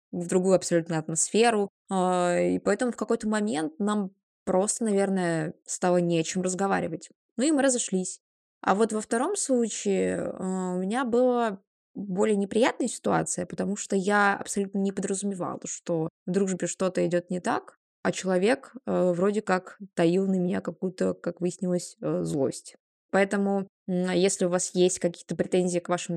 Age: 20-39